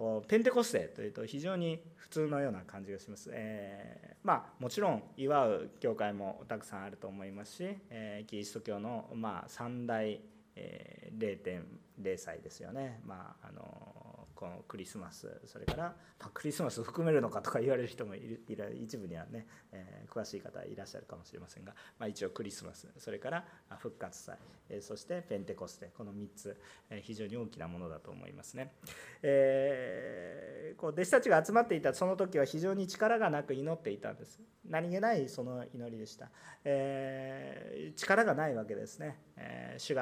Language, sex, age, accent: Japanese, male, 40-59, native